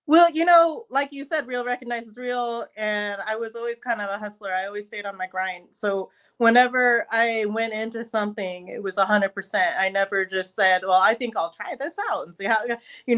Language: English